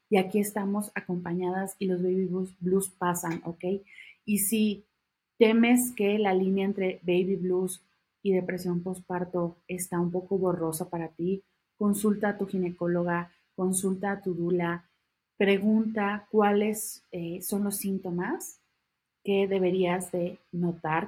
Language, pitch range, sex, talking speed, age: Spanish, 175-210 Hz, female, 130 wpm, 30-49